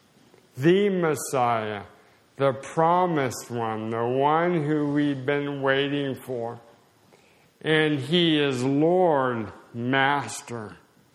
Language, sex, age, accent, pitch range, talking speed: English, male, 50-69, American, 115-140 Hz, 90 wpm